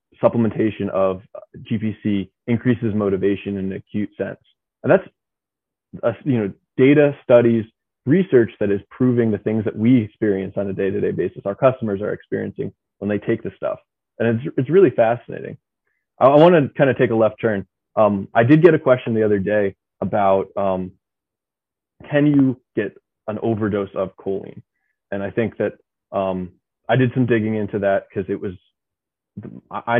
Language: English